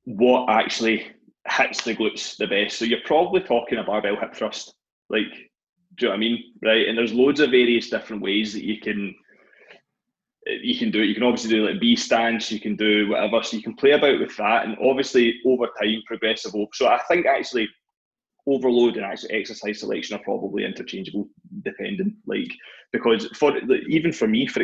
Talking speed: 195 wpm